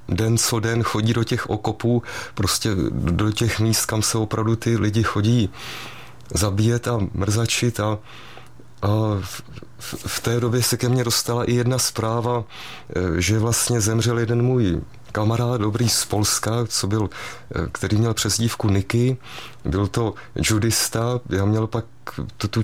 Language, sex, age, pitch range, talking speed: Czech, male, 30-49, 105-120 Hz, 145 wpm